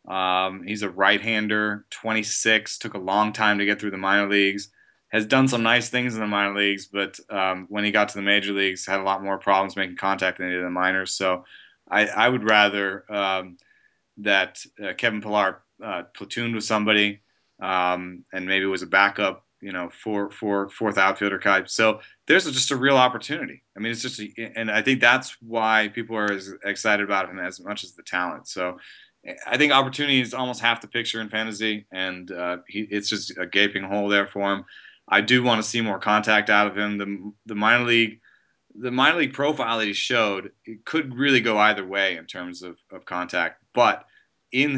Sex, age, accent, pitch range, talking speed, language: male, 30-49, American, 95-110 Hz, 210 wpm, English